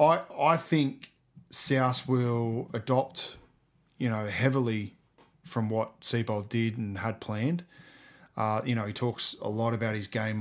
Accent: Australian